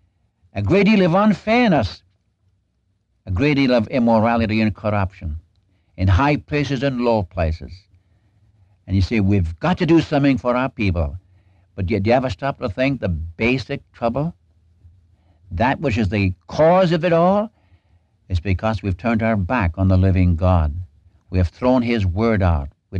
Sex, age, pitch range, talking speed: male, 60-79, 90-120 Hz, 165 wpm